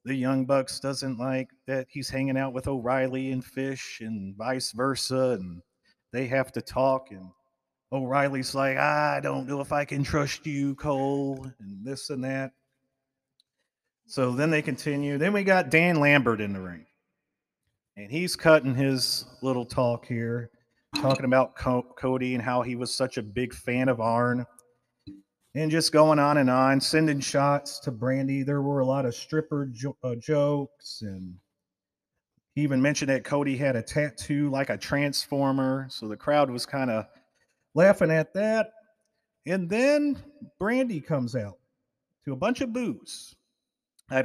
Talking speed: 160 wpm